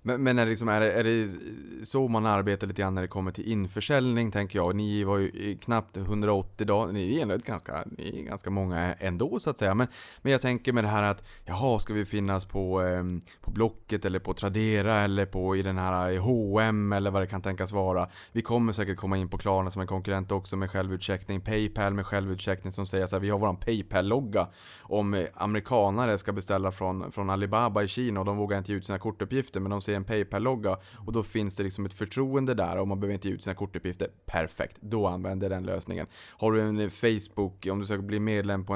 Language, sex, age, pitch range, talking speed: Swedish, male, 20-39, 95-110 Hz, 225 wpm